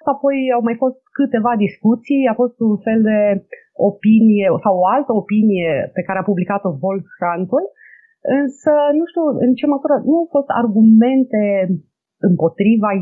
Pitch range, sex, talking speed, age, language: 200-270 Hz, female, 150 wpm, 30-49, Romanian